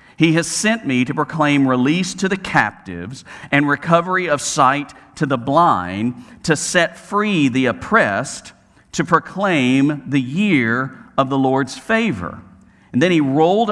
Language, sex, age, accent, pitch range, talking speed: English, male, 50-69, American, 130-185 Hz, 150 wpm